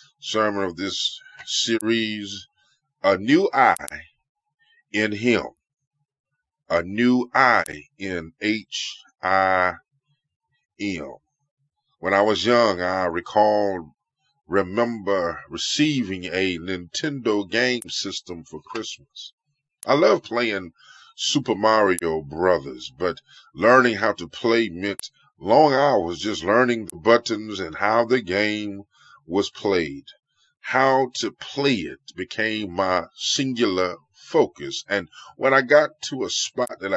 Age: 30-49